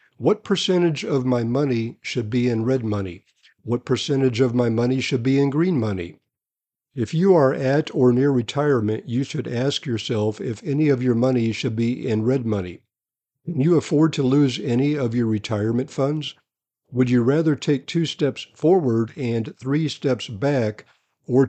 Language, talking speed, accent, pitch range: English, 175 wpm, American, 120-145 Hz